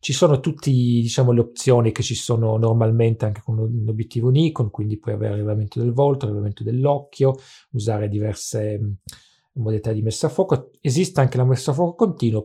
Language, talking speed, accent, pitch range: English, 175 wpm, Italian, 115-145 Hz